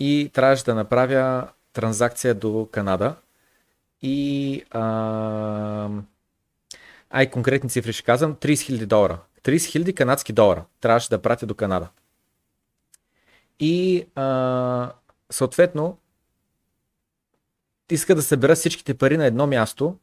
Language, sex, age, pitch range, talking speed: Bulgarian, male, 30-49, 115-150 Hz, 110 wpm